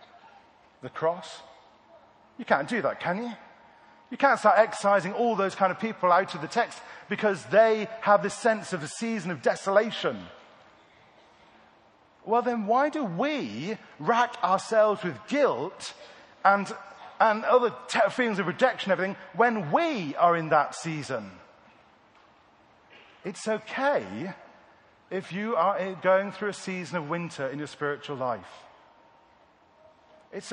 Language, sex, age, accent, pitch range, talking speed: English, male, 40-59, British, 185-235 Hz, 140 wpm